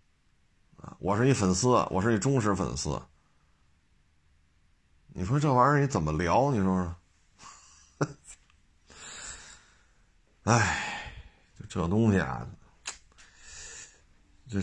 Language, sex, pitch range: Chinese, male, 75-105 Hz